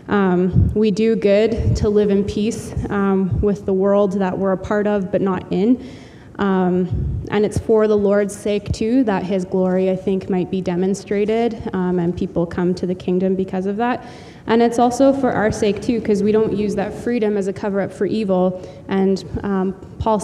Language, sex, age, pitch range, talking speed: English, female, 20-39, 190-210 Hz, 200 wpm